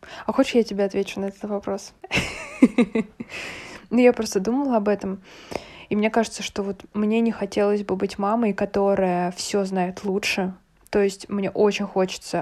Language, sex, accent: Russian, female, native